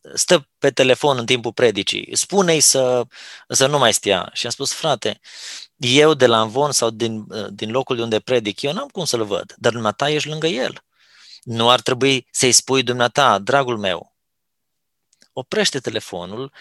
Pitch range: 110-145 Hz